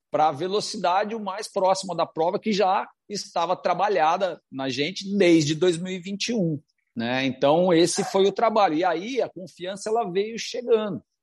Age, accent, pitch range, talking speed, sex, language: 40-59, Brazilian, 130-185 Hz, 150 wpm, male, Portuguese